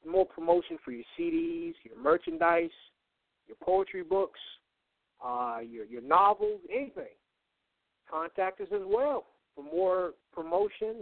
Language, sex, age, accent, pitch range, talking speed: English, male, 50-69, American, 145-190 Hz, 120 wpm